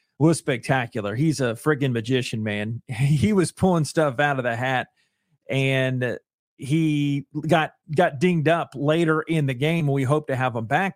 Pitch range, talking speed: 130-155 Hz, 170 wpm